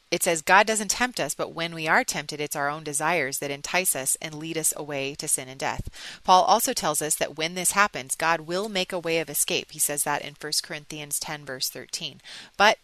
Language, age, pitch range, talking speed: English, 30-49, 150-180 Hz, 240 wpm